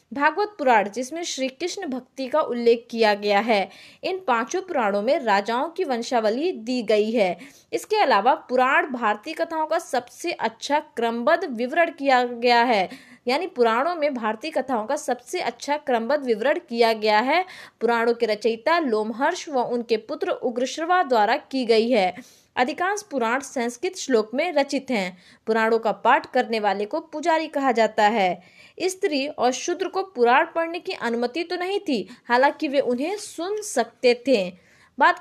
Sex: female